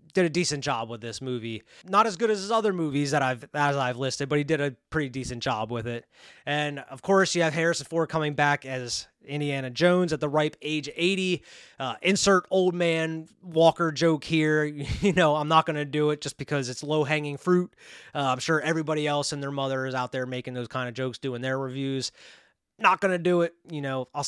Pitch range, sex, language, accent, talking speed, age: 140-180 Hz, male, English, American, 230 wpm, 20-39